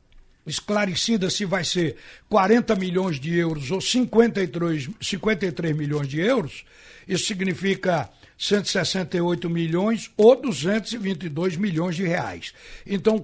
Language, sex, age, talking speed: Portuguese, male, 60-79, 110 wpm